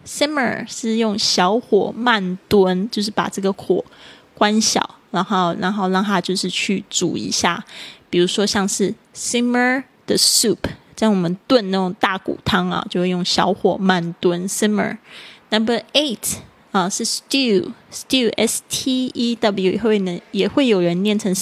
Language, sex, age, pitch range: Chinese, female, 20-39, 190-230 Hz